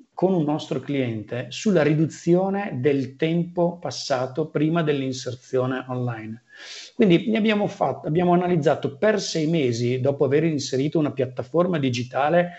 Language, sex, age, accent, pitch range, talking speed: Italian, male, 40-59, native, 130-170 Hz, 120 wpm